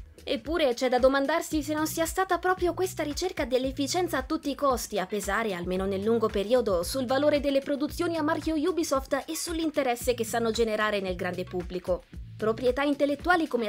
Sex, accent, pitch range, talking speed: female, native, 210-280 Hz, 175 wpm